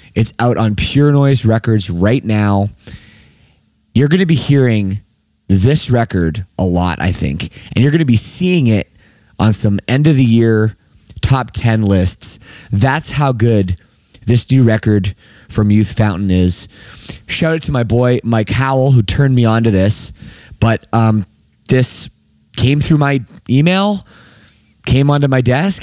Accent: American